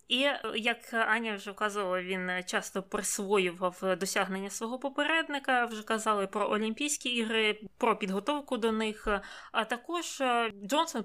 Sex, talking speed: female, 125 wpm